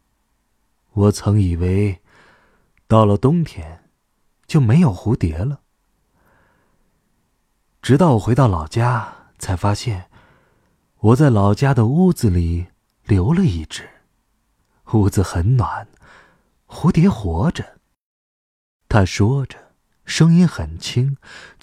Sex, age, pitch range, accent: male, 30-49, 95-135 Hz, native